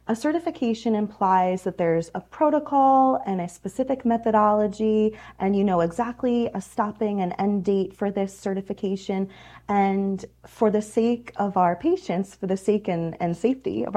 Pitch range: 175-220 Hz